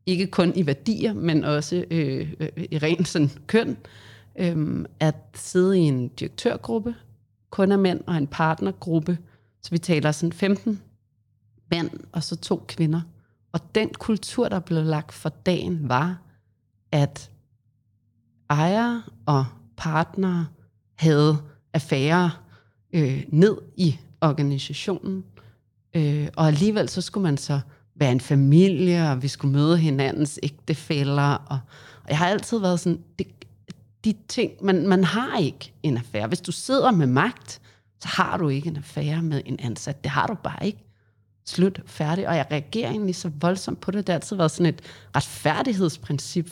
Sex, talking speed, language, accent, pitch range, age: female, 155 wpm, Danish, native, 130-175 Hz, 30-49